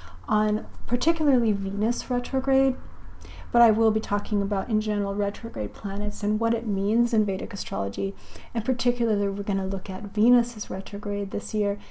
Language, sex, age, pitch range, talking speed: English, female, 30-49, 200-230 Hz, 155 wpm